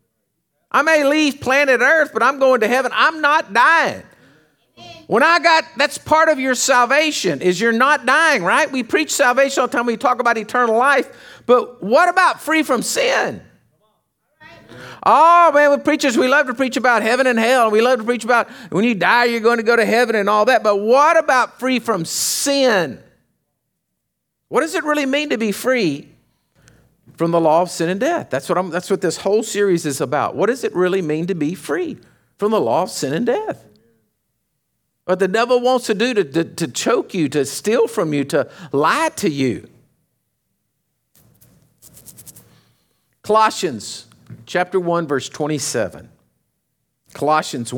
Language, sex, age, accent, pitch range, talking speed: English, male, 50-69, American, 180-280 Hz, 180 wpm